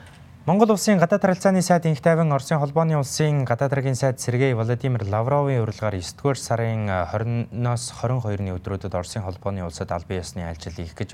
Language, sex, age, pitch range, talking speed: English, male, 20-39, 95-115 Hz, 150 wpm